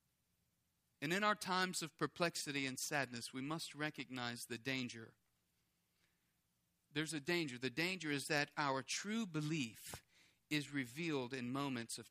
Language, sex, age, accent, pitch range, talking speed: English, male, 40-59, American, 135-210 Hz, 140 wpm